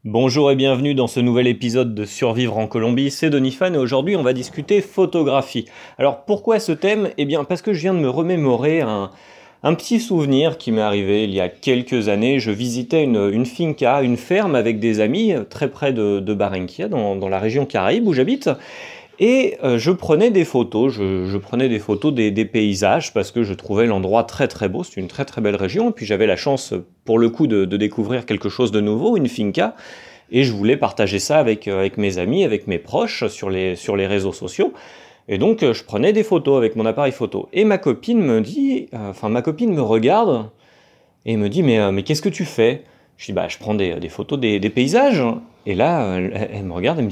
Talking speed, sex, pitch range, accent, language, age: 225 wpm, male, 105-155 Hz, French, French, 30-49